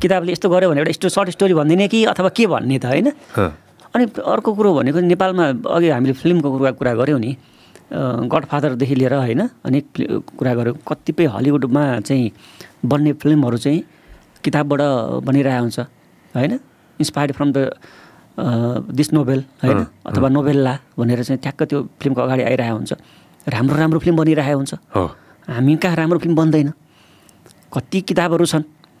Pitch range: 135-170 Hz